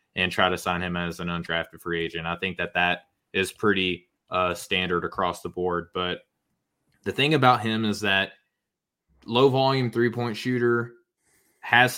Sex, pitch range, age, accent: male, 95-110 Hz, 20-39, American